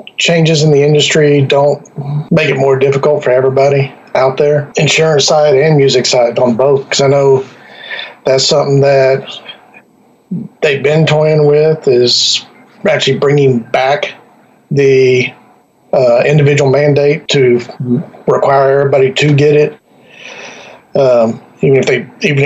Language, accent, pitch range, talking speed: English, American, 135-150 Hz, 130 wpm